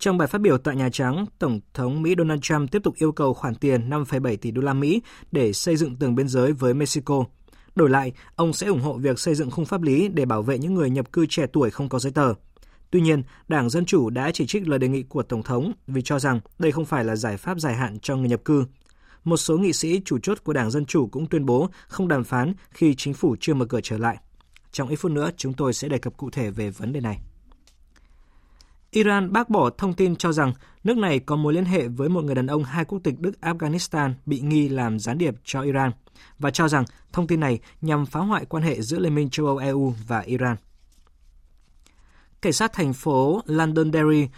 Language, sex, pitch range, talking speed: Vietnamese, male, 125-165 Hz, 240 wpm